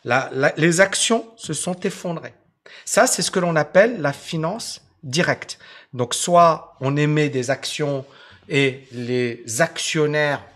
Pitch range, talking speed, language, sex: 130-165 Hz, 140 wpm, French, male